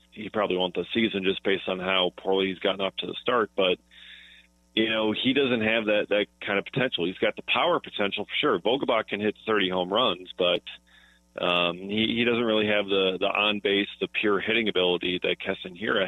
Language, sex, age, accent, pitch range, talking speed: English, male, 40-59, American, 90-105 Hz, 215 wpm